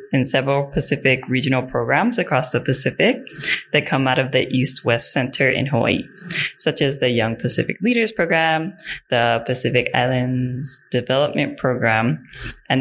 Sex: female